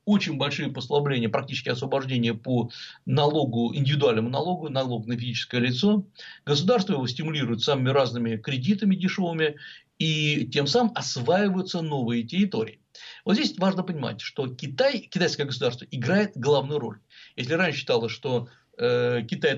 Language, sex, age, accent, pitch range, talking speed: Russian, male, 60-79, native, 125-195 Hz, 130 wpm